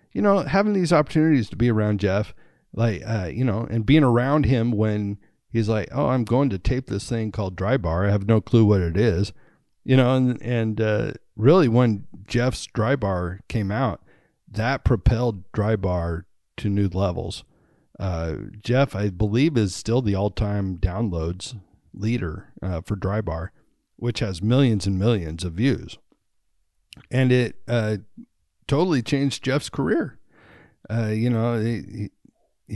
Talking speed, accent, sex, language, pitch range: 165 wpm, American, male, English, 100-130 Hz